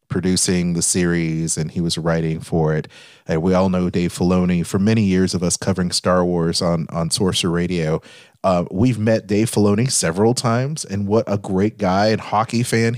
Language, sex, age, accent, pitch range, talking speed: English, male, 30-49, American, 90-115 Hz, 195 wpm